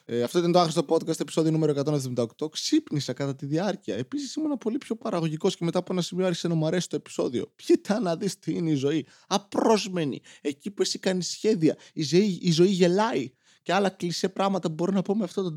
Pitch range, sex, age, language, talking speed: 135-185 Hz, male, 20-39, Greek, 220 wpm